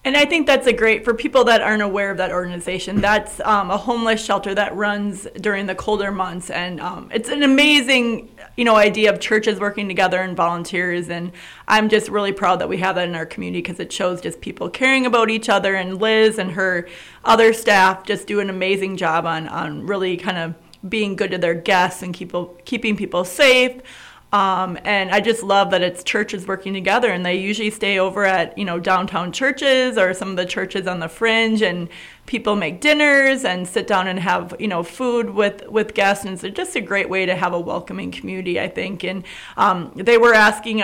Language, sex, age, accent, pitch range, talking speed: English, female, 30-49, American, 180-215 Hz, 215 wpm